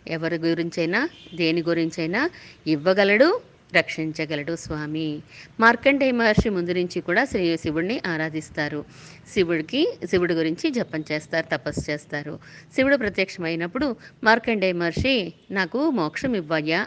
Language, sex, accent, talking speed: Telugu, female, native, 105 wpm